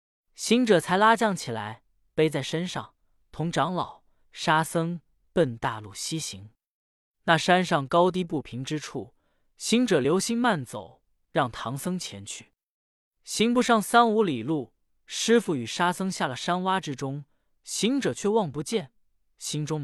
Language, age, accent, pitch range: Chinese, 20-39, native, 135-210 Hz